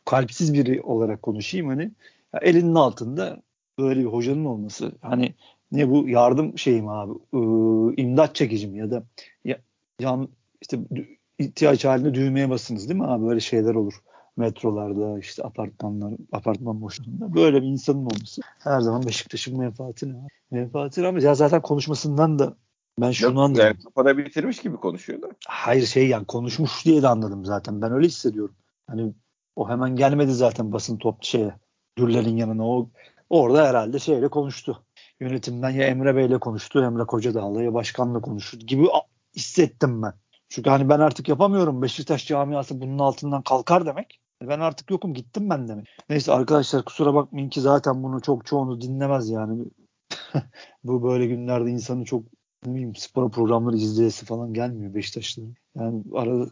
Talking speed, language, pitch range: 150 wpm, Turkish, 115-140 Hz